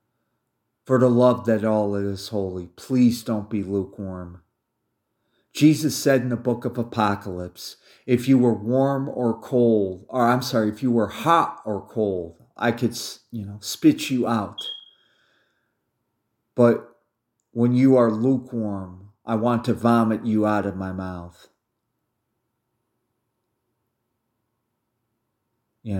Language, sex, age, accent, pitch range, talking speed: English, male, 40-59, American, 105-120 Hz, 125 wpm